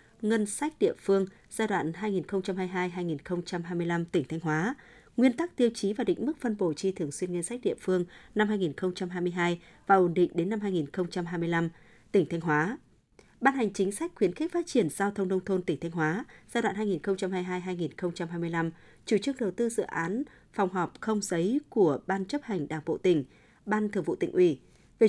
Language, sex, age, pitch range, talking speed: Vietnamese, female, 20-39, 175-220 Hz, 185 wpm